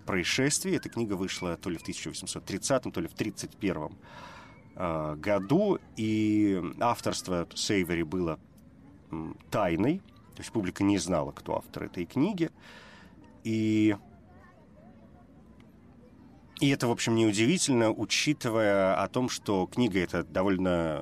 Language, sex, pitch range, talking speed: Russian, male, 90-110 Hz, 110 wpm